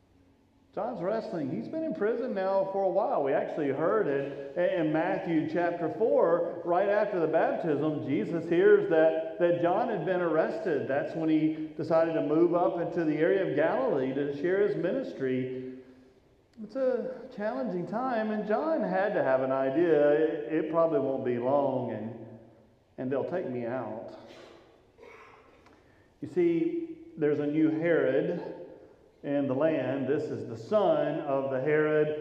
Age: 40-59